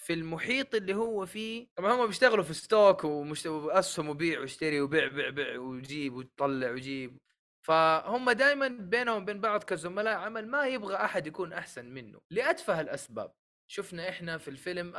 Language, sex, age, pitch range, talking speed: Arabic, male, 20-39, 140-200 Hz, 155 wpm